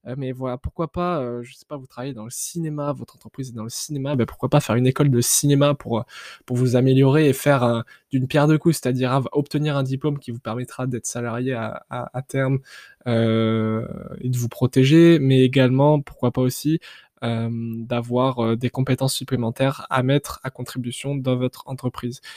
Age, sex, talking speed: 20-39, male, 195 wpm